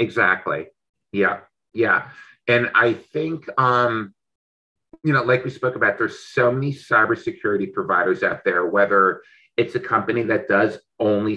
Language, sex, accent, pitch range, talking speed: English, male, American, 100-145 Hz, 140 wpm